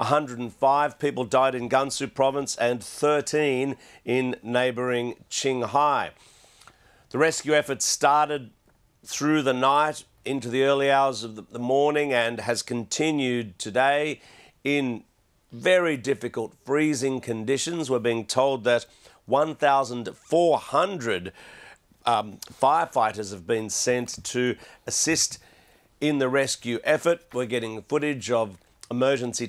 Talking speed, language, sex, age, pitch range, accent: 110 wpm, English, male, 50-69, 120-145 Hz, Australian